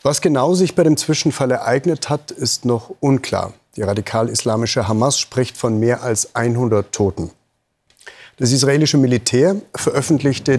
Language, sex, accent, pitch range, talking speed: German, male, German, 105-140 Hz, 135 wpm